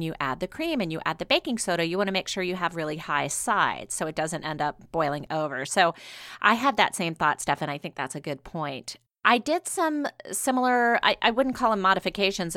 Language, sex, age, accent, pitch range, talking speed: English, female, 30-49, American, 155-200 Hz, 245 wpm